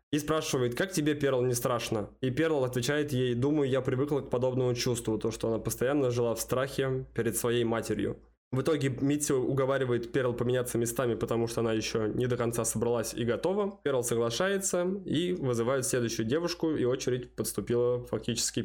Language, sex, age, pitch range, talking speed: Russian, male, 20-39, 120-140 Hz, 175 wpm